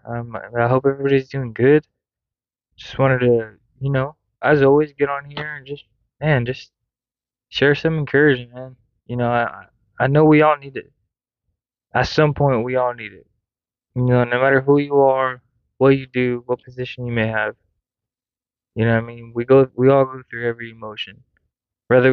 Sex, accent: male, American